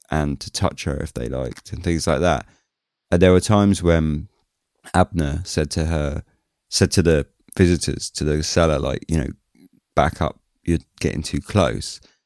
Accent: British